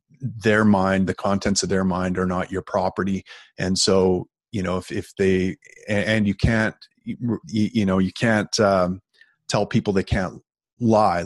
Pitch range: 95-110 Hz